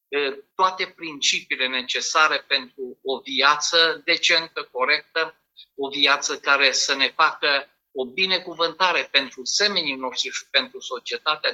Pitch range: 135-185 Hz